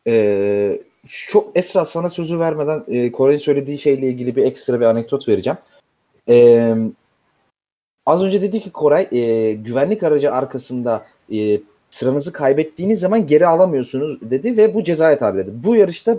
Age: 30-49